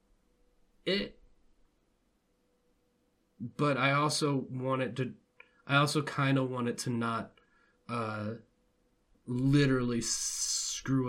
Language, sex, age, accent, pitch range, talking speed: English, male, 20-39, American, 115-140 Hz, 95 wpm